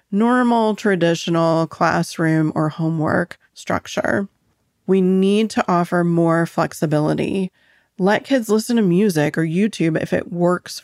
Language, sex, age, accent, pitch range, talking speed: English, female, 30-49, American, 165-210 Hz, 120 wpm